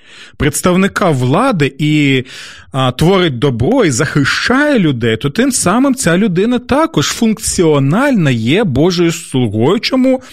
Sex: male